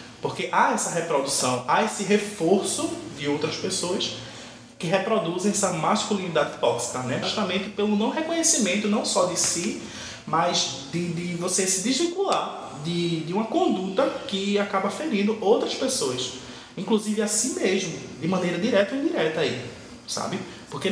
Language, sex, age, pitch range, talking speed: Portuguese, male, 20-39, 165-220 Hz, 145 wpm